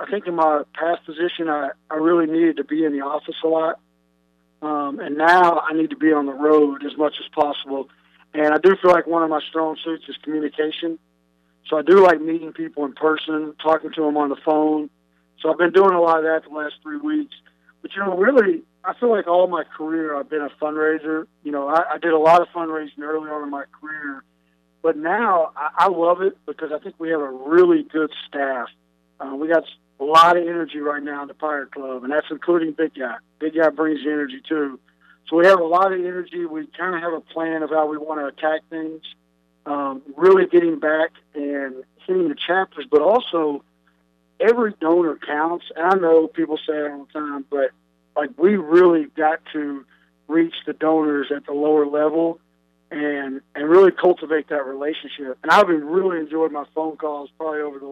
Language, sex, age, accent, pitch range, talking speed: English, male, 40-59, American, 145-165 Hz, 215 wpm